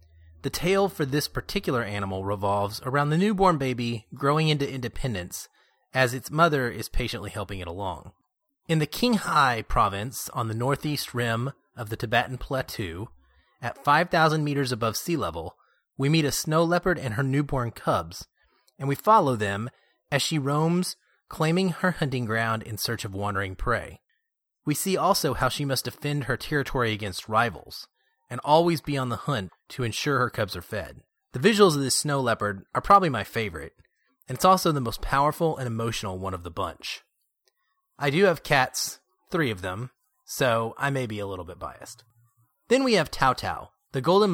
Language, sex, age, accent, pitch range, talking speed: English, male, 30-49, American, 115-160 Hz, 180 wpm